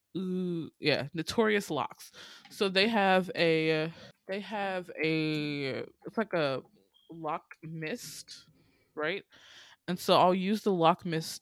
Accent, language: American, English